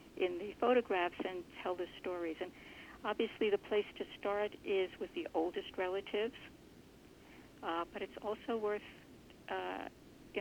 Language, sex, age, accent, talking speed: English, female, 60-79, American, 145 wpm